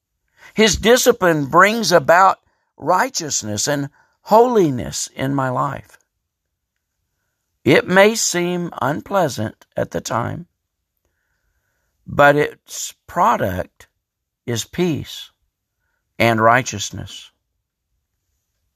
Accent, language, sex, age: American, English, male, 60-79